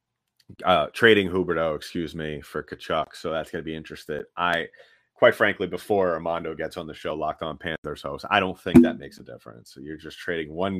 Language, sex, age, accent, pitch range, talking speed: English, male, 30-49, American, 80-100 Hz, 210 wpm